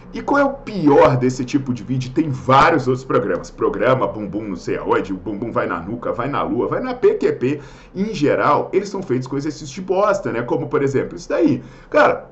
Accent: Brazilian